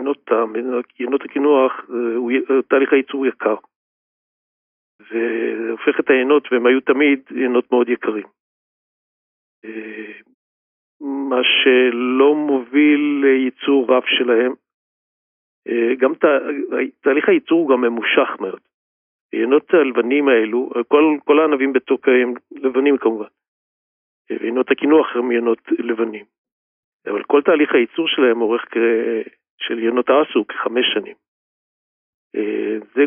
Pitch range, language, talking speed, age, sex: 115-140 Hz, Hebrew, 105 wpm, 50-69, male